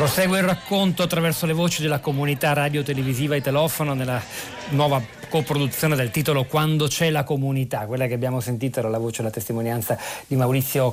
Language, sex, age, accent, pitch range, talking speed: Italian, male, 40-59, native, 120-145 Hz, 180 wpm